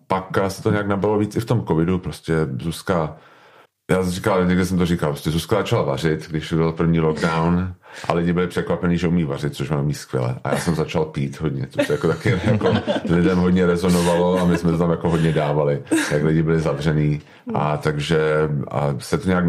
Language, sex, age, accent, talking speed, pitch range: Czech, male, 40-59, native, 210 wpm, 80-90 Hz